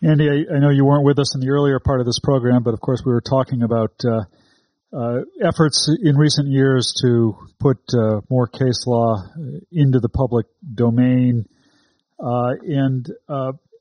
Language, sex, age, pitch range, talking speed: English, male, 40-59, 115-140 Hz, 180 wpm